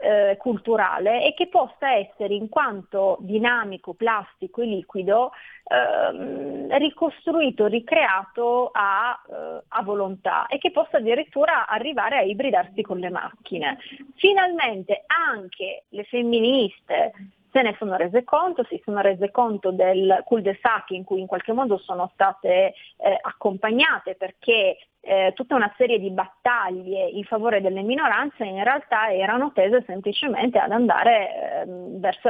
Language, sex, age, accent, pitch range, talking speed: Italian, female, 30-49, native, 190-245 Hz, 135 wpm